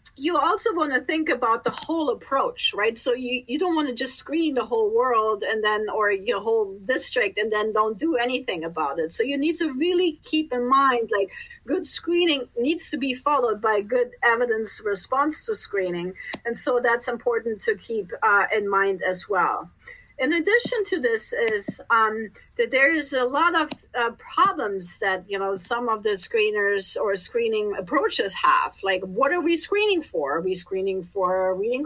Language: English